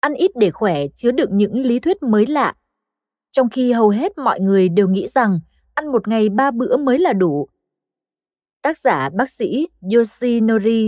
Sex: female